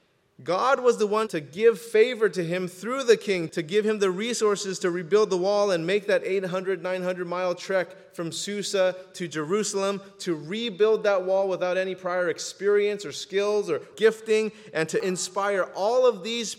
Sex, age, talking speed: male, 30-49, 180 wpm